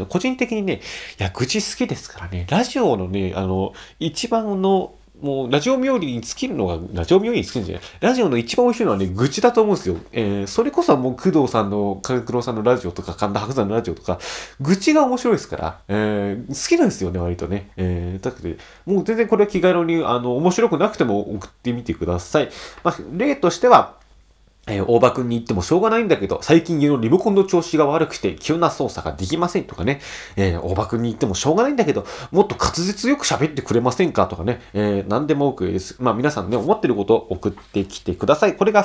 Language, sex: Japanese, male